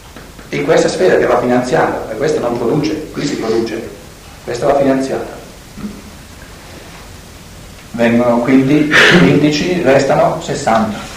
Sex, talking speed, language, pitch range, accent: male, 105 wpm, Italian, 115-180 Hz, native